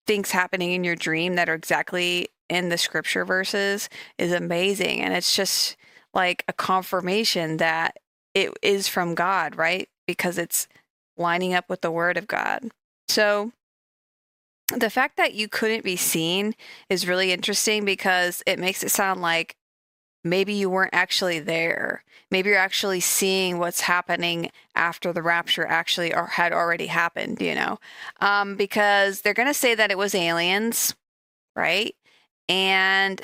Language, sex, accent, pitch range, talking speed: English, female, American, 175-205 Hz, 155 wpm